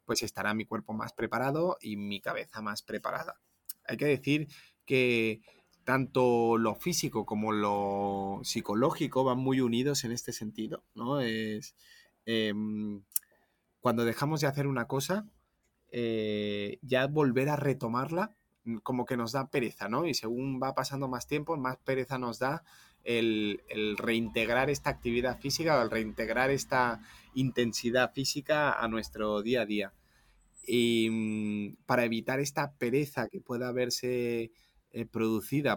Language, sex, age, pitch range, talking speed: Spanish, male, 30-49, 105-130 Hz, 140 wpm